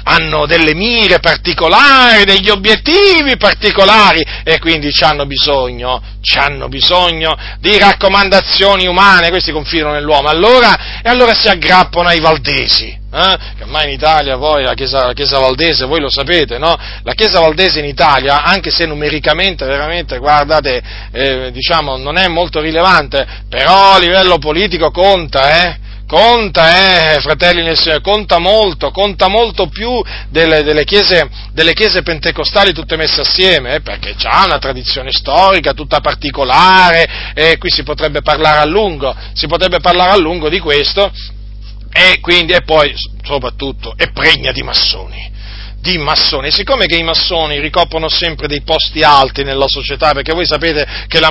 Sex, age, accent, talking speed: male, 40-59, native, 155 wpm